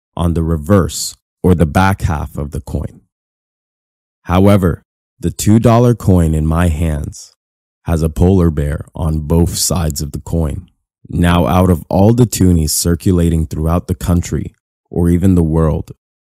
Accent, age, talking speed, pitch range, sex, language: American, 20-39, 150 wpm, 80-95 Hz, male, English